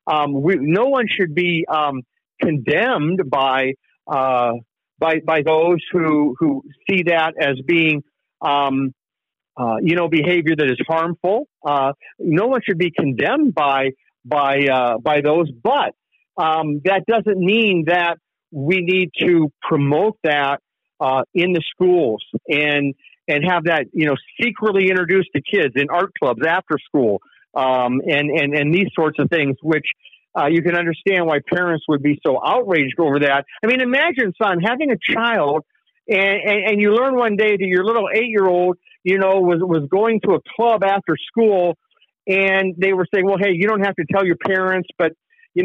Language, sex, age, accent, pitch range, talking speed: English, male, 50-69, American, 150-195 Hz, 175 wpm